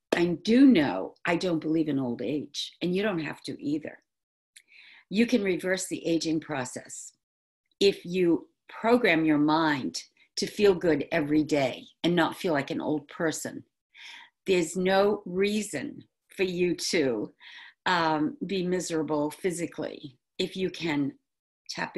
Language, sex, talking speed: English, female, 140 wpm